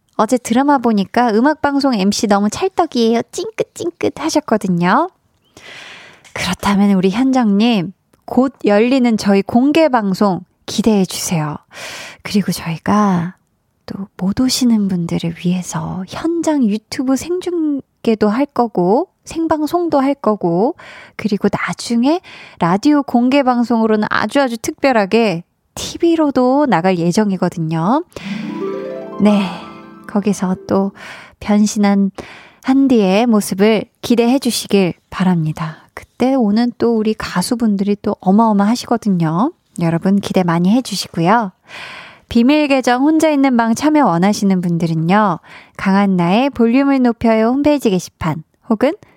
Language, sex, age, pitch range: Korean, female, 20-39, 185-265 Hz